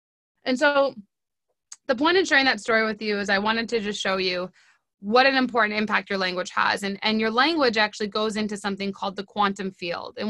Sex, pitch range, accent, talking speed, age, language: female, 210-260 Hz, American, 215 wpm, 20-39, English